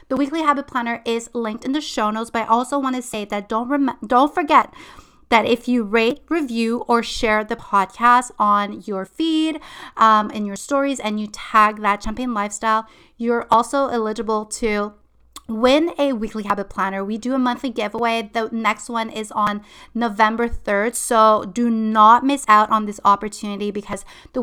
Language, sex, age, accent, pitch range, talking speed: English, female, 30-49, American, 210-250 Hz, 180 wpm